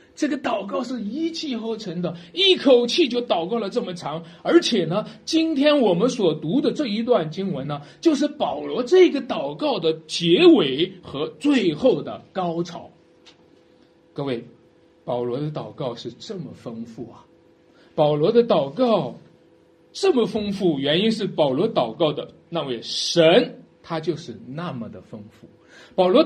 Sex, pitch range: male, 150-250 Hz